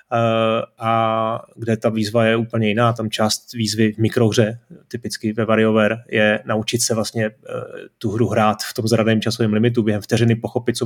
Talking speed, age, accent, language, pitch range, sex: 170 wpm, 30-49, native, Czech, 110-130 Hz, male